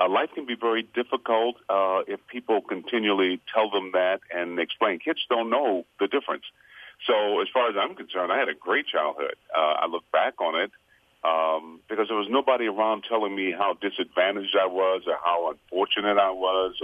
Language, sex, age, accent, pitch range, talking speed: English, male, 50-69, American, 85-105 Hz, 190 wpm